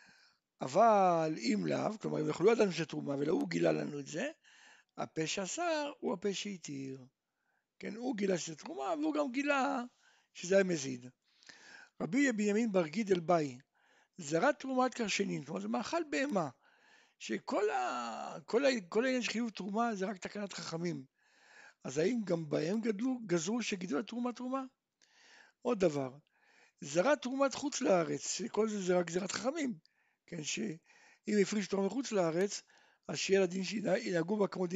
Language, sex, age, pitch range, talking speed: Hebrew, male, 60-79, 180-270 Hz, 150 wpm